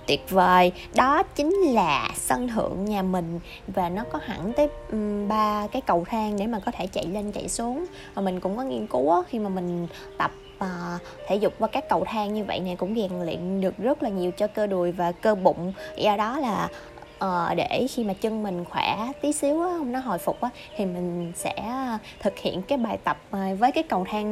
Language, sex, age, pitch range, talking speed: Vietnamese, female, 20-39, 190-260 Hz, 205 wpm